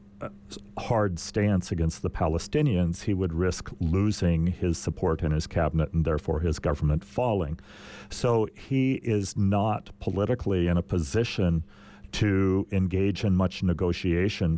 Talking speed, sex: 135 wpm, male